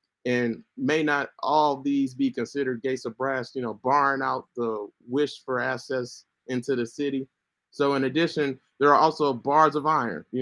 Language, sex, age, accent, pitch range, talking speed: English, male, 30-49, American, 120-145 Hz, 180 wpm